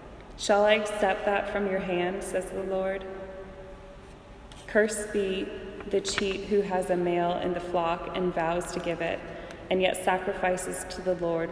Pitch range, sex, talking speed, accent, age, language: 170-195 Hz, female, 165 wpm, American, 20-39, English